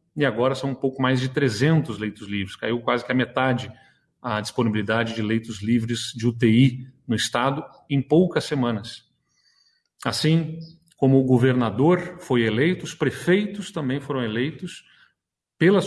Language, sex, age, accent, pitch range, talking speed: Portuguese, male, 40-59, Brazilian, 125-160 Hz, 150 wpm